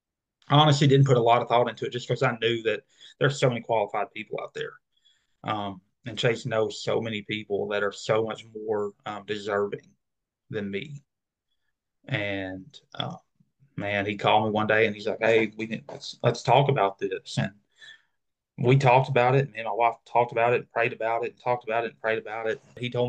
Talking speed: 215 wpm